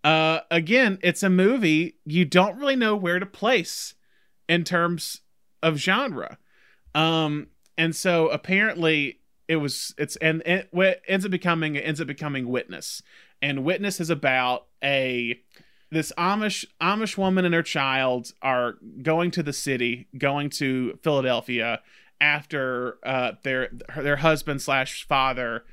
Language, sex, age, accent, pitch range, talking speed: English, male, 30-49, American, 130-170 Hz, 140 wpm